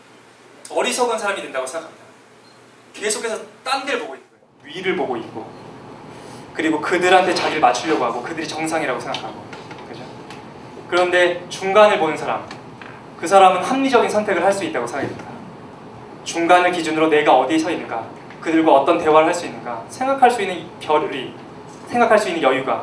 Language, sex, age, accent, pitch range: Korean, male, 20-39, native, 155-205 Hz